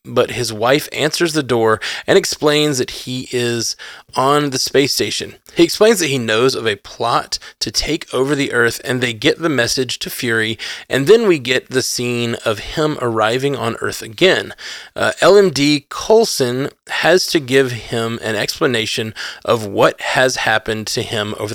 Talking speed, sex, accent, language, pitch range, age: 175 wpm, male, American, English, 115-150 Hz, 20-39